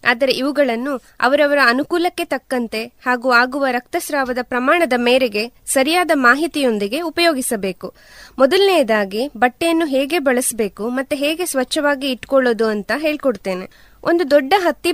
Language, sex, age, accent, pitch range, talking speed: Kannada, female, 20-39, native, 240-325 Hz, 105 wpm